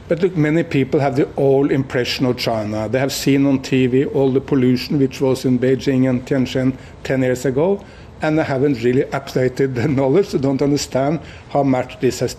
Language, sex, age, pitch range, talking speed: English, male, 60-79, 130-150 Hz, 200 wpm